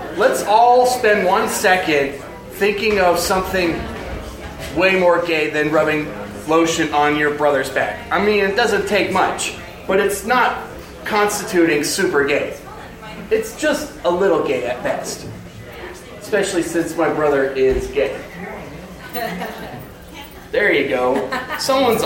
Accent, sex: American, male